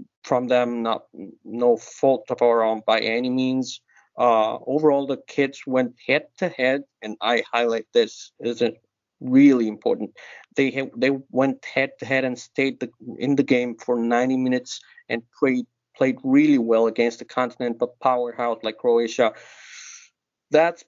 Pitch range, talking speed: 120-140 Hz, 150 wpm